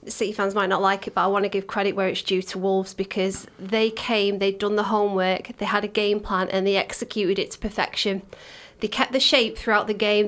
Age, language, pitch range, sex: 30-49, English, 200-230 Hz, female